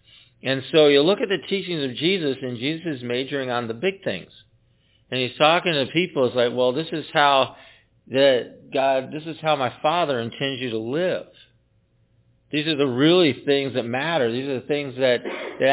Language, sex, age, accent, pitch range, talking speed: English, male, 50-69, American, 110-150 Hz, 200 wpm